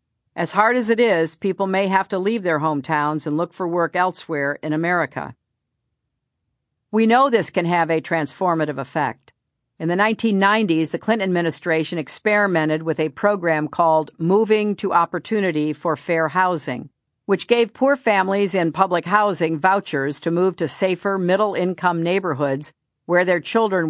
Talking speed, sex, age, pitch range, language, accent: 155 wpm, female, 50-69, 150-195 Hz, English, American